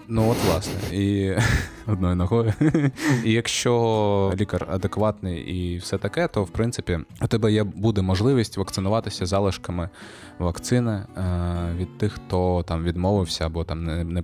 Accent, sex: native, male